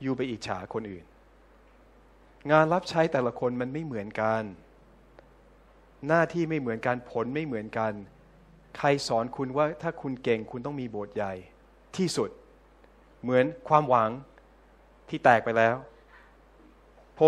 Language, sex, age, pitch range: Thai, male, 20-39, 120-155 Hz